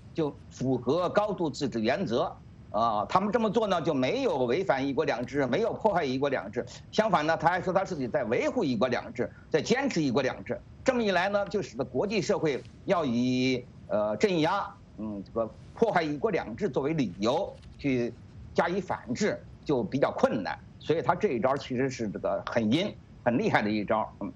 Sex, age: male, 50-69